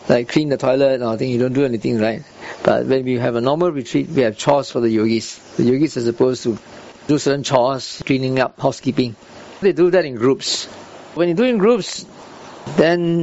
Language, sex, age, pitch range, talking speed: English, male, 50-69, 125-170 Hz, 205 wpm